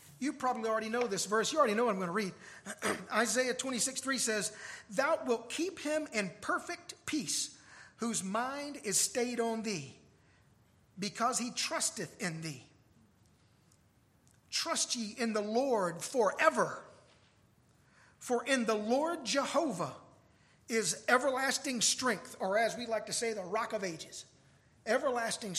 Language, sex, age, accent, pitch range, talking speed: English, male, 50-69, American, 210-275 Hz, 140 wpm